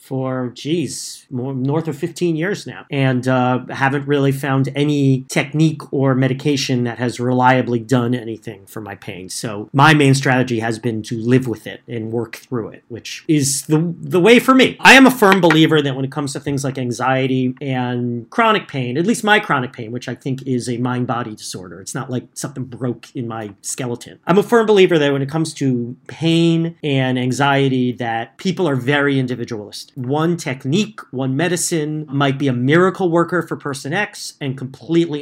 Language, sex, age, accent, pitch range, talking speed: English, male, 40-59, American, 125-165 Hz, 195 wpm